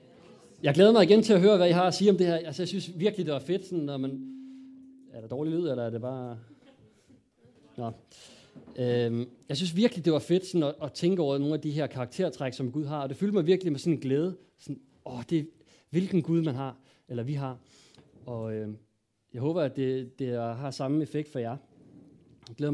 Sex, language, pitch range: male, Danish, 125-160 Hz